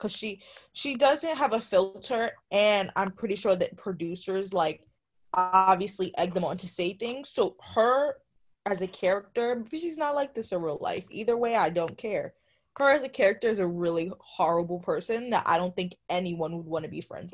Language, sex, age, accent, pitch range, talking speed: English, female, 20-39, American, 180-240 Hz, 195 wpm